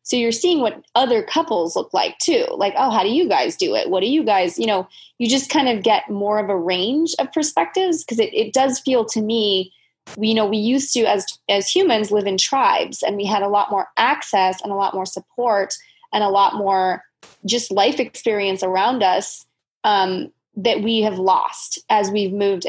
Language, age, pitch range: English, 20-39, 195-230 Hz